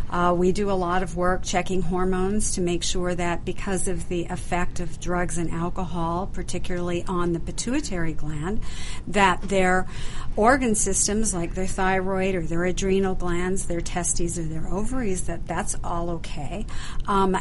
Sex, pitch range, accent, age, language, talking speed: female, 175-195 Hz, American, 50-69, English, 160 wpm